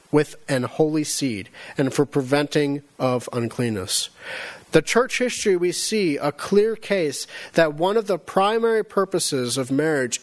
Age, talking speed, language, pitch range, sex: 40-59, 145 wpm, English, 145-195 Hz, male